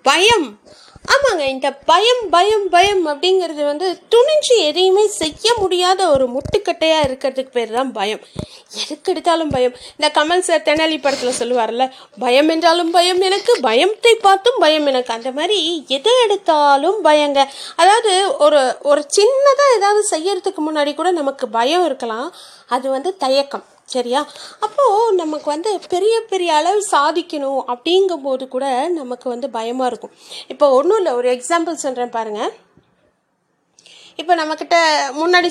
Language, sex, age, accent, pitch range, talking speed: Tamil, female, 30-49, native, 265-370 Hz, 130 wpm